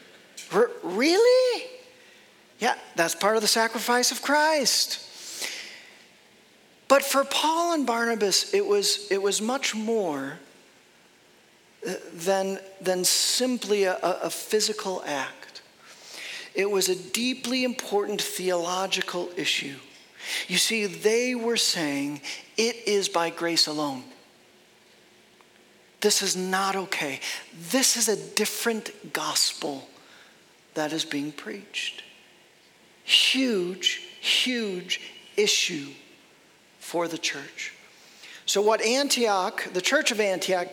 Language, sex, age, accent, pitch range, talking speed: English, male, 40-59, American, 185-245 Hz, 100 wpm